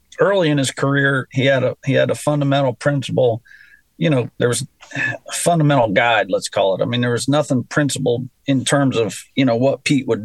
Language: English